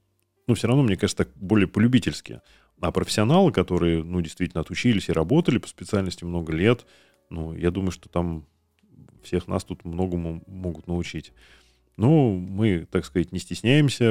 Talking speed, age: 160 wpm, 30-49